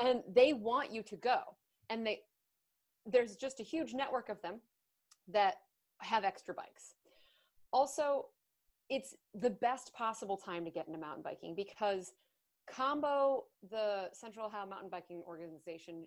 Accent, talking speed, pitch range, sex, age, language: American, 140 wpm, 185-245 Hz, female, 30-49, English